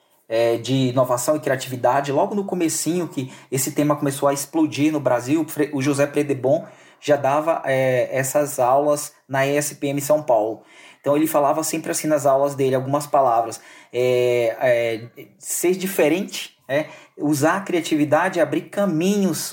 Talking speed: 145 wpm